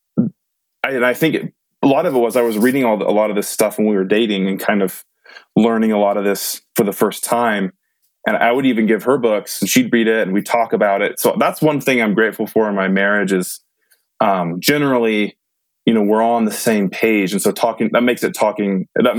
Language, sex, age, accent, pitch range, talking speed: English, male, 20-39, American, 105-130 Hz, 250 wpm